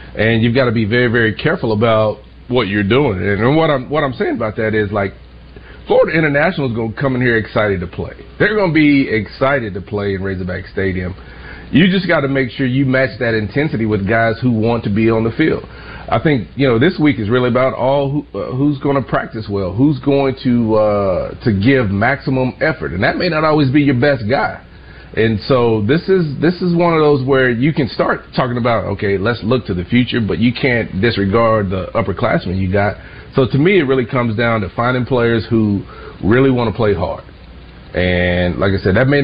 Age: 40-59